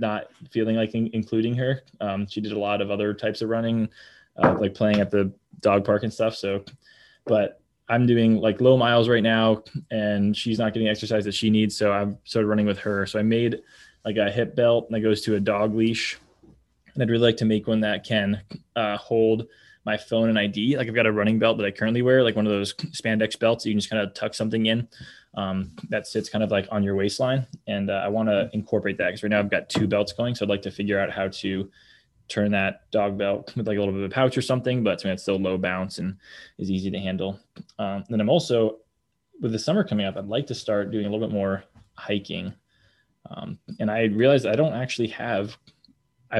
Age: 20-39